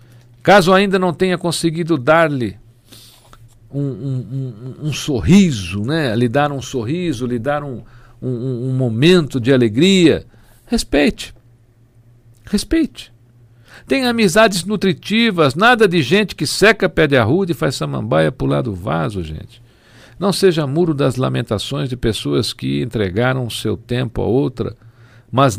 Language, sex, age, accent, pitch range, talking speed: Portuguese, male, 60-79, Brazilian, 110-160 Hz, 150 wpm